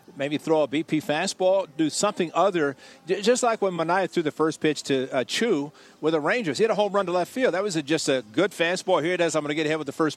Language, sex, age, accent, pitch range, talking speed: English, male, 50-69, American, 145-195 Hz, 285 wpm